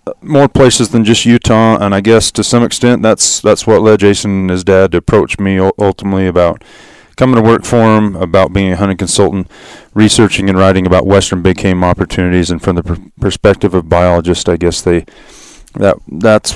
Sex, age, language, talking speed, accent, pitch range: male, 30-49, English, 200 wpm, American, 95-110 Hz